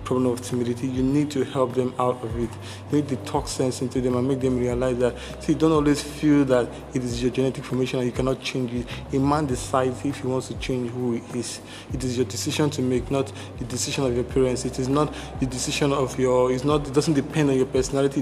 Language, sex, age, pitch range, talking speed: English, male, 20-39, 125-140 Hz, 245 wpm